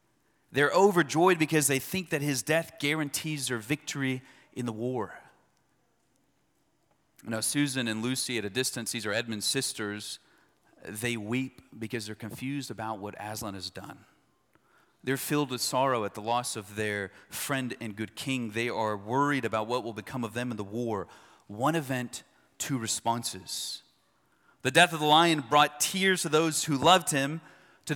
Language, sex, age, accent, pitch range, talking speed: English, male, 30-49, American, 115-155 Hz, 165 wpm